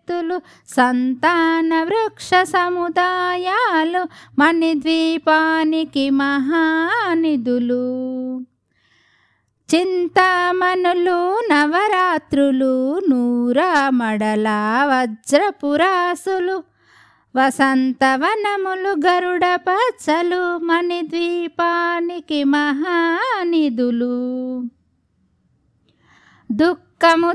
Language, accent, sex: Telugu, native, female